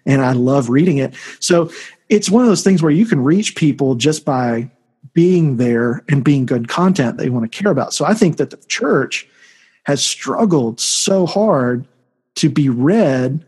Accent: American